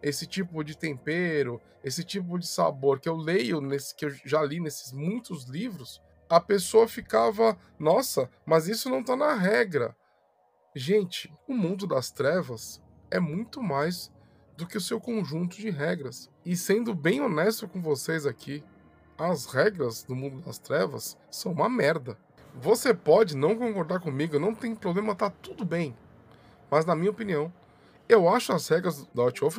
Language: Portuguese